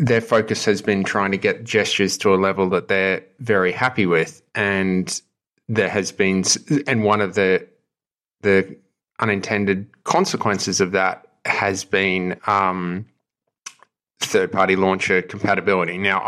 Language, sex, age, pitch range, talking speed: English, male, 30-49, 95-105 Hz, 135 wpm